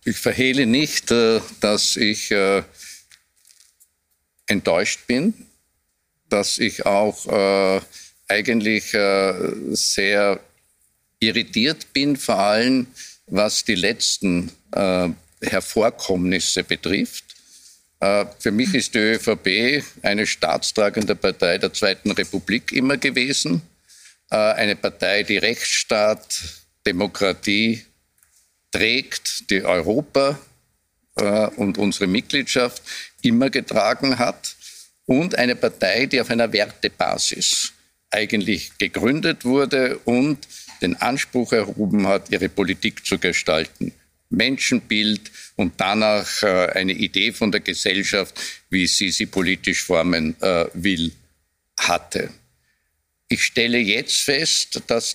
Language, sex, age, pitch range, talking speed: German, male, 50-69, 90-120 Hz, 100 wpm